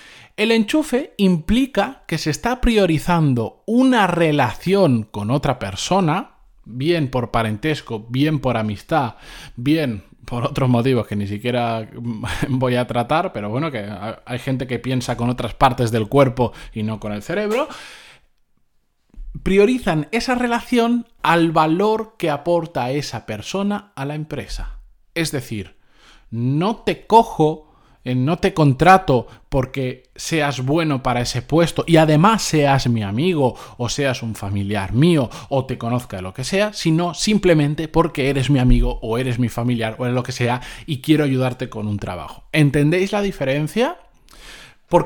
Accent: Spanish